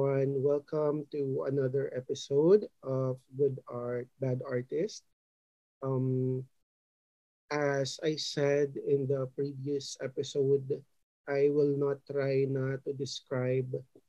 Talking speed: 105 wpm